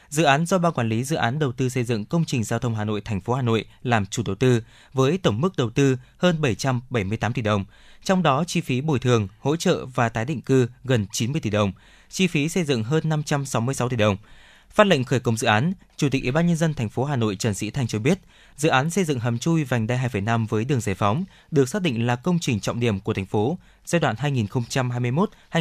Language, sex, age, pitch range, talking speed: Vietnamese, male, 20-39, 115-150 Hz, 250 wpm